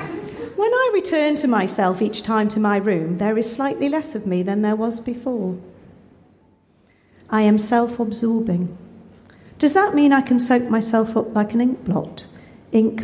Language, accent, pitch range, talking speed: English, British, 185-230 Hz, 150 wpm